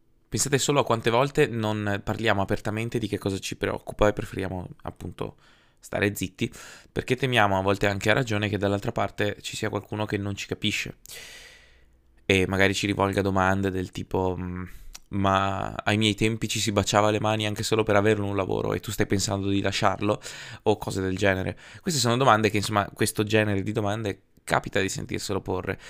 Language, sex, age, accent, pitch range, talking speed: Italian, male, 20-39, native, 100-125 Hz, 185 wpm